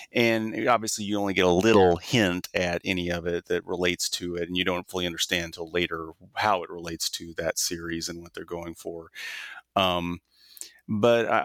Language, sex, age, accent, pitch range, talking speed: English, male, 30-49, American, 85-110 Hz, 190 wpm